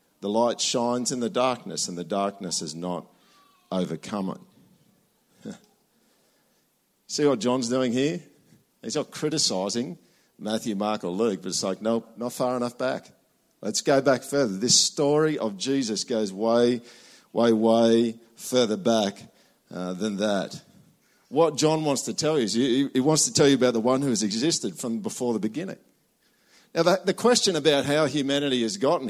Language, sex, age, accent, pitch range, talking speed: English, male, 50-69, Australian, 115-150 Hz, 165 wpm